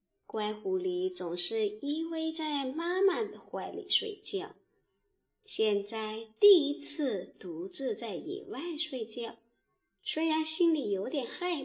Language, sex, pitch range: Chinese, male, 240-365 Hz